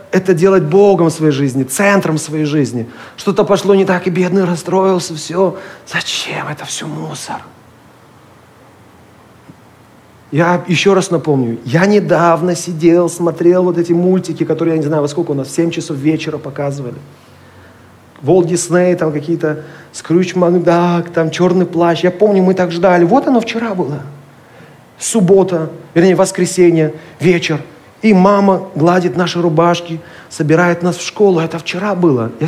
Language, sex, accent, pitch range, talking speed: Russian, male, native, 150-180 Hz, 145 wpm